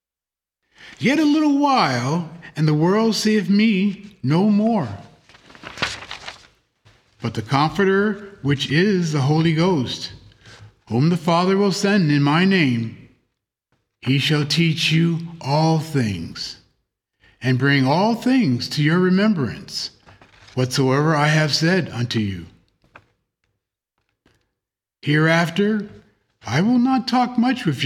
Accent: American